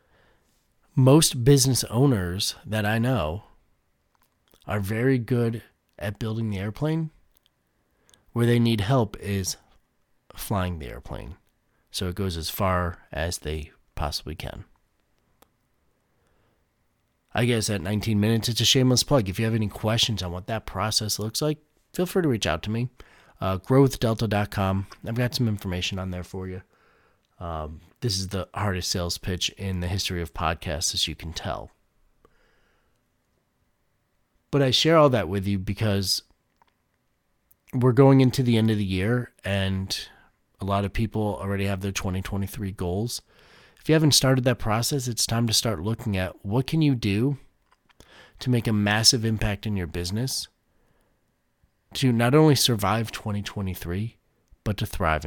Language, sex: English, male